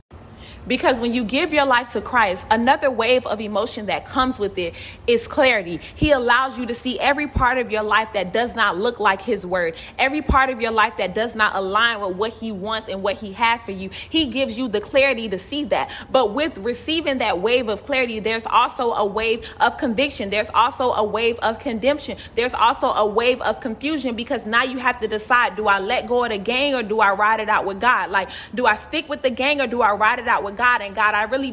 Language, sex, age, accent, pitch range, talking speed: English, female, 30-49, American, 220-280 Hz, 240 wpm